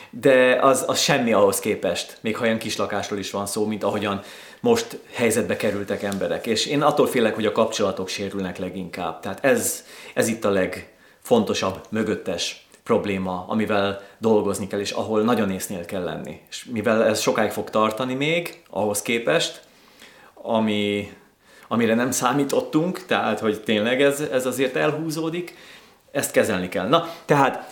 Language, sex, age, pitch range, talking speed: Hungarian, male, 30-49, 100-135 Hz, 150 wpm